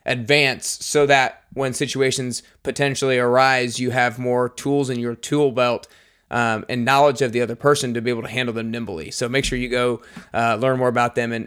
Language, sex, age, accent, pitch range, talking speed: English, male, 20-39, American, 125-145 Hz, 210 wpm